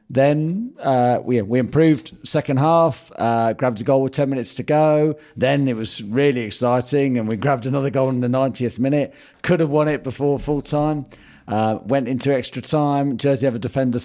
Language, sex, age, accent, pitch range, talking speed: English, male, 40-59, British, 115-140 Hz, 195 wpm